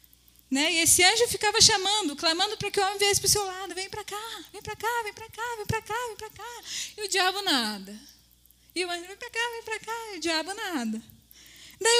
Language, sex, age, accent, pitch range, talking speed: Portuguese, female, 10-29, Brazilian, 205-340 Hz, 245 wpm